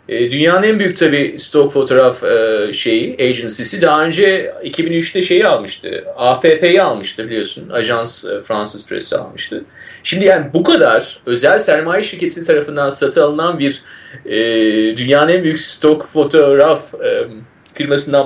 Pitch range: 160-255 Hz